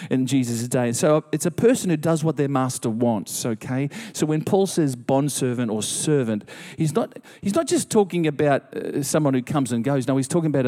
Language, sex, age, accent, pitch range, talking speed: English, male, 40-59, Australian, 125-150 Hz, 210 wpm